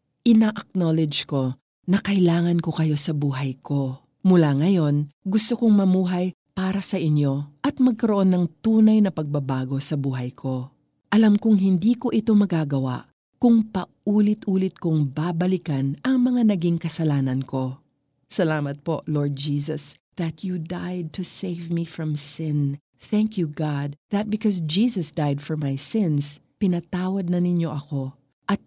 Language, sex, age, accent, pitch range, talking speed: Filipino, female, 40-59, native, 145-190 Hz, 140 wpm